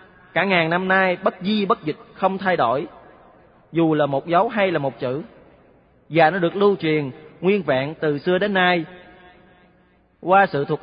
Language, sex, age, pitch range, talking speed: Vietnamese, male, 20-39, 150-195 Hz, 185 wpm